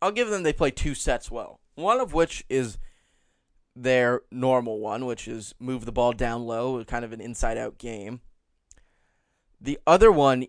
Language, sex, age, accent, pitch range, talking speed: English, male, 20-39, American, 115-130 Hz, 170 wpm